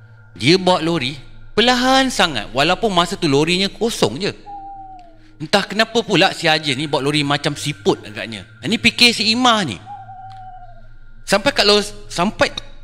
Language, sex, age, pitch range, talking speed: Malay, male, 30-49, 125-175 Hz, 145 wpm